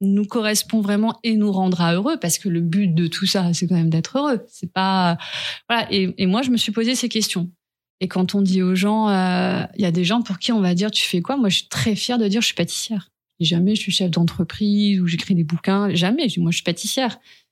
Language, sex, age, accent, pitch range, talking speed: French, female, 30-49, French, 180-225 Hz, 260 wpm